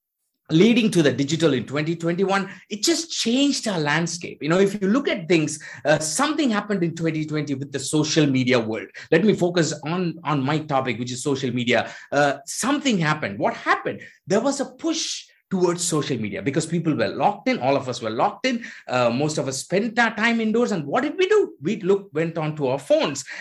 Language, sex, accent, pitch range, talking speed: English, male, Indian, 140-220 Hz, 210 wpm